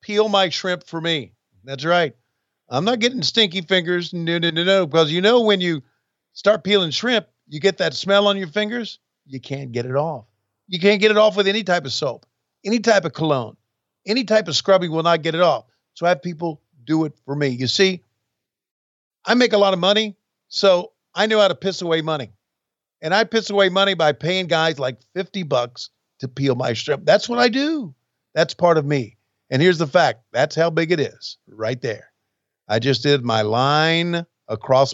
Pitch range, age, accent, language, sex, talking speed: 130-190 Hz, 50-69, American, English, male, 210 wpm